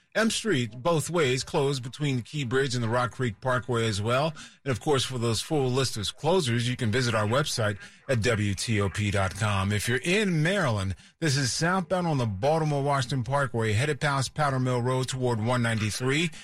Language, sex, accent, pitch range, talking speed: English, male, American, 110-140 Hz, 185 wpm